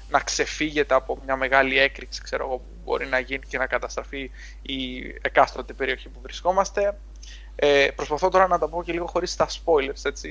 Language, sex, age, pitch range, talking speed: Greek, male, 20-39, 125-145 Hz, 185 wpm